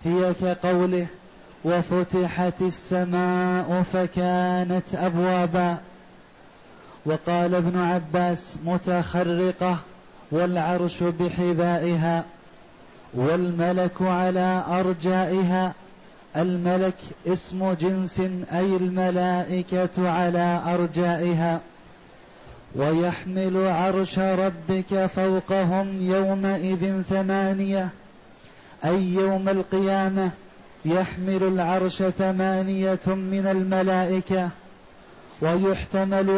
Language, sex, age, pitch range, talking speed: Arabic, male, 30-49, 180-190 Hz, 60 wpm